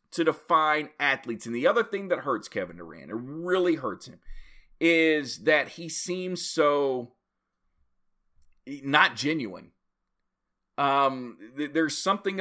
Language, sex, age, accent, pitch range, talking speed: English, male, 40-59, American, 140-180 Hz, 120 wpm